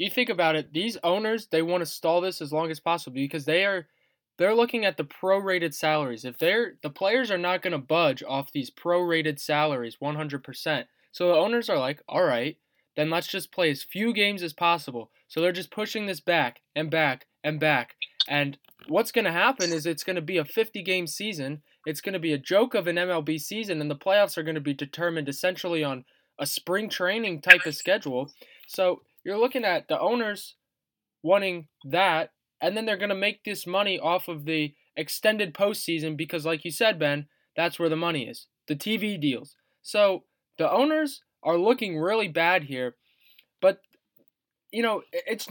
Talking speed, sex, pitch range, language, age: 195 wpm, male, 155-200 Hz, English, 20-39